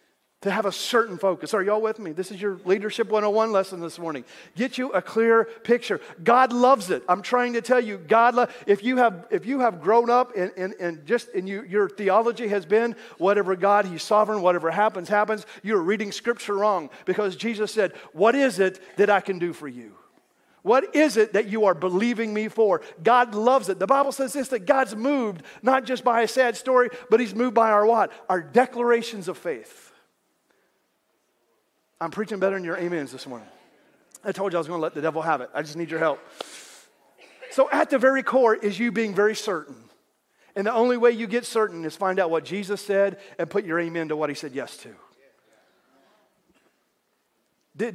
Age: 40-59